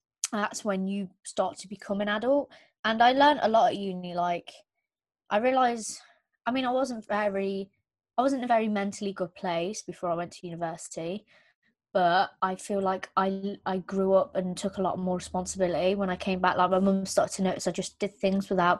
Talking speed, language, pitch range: 205 wpm, English, 175-210 Hz